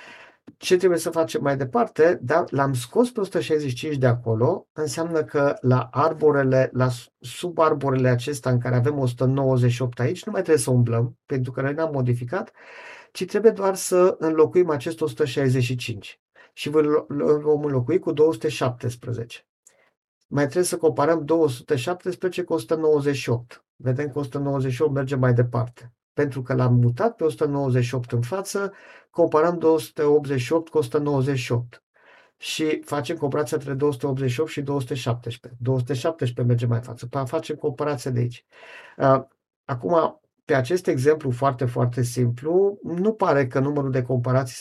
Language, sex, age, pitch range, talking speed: Romanian, male, 50-69, 125-155 Hz, 135 wpm